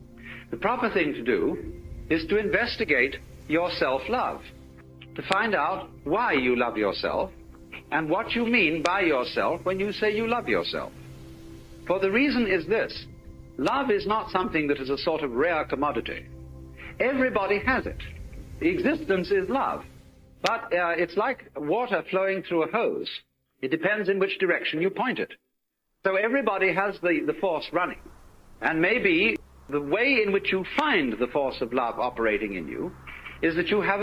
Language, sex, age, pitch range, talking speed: English, male, 60-79, 120-195 Hz, 170 wpm